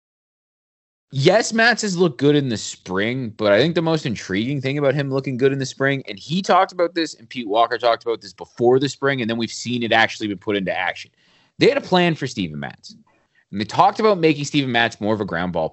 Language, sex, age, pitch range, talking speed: English, male, 30-49, 110-155 Hz, 250 wpm